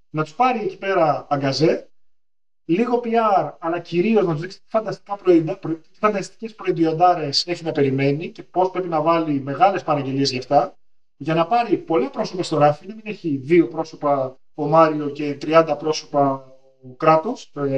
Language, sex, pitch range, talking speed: Greek, male, 145-205 Hz, 165 wpm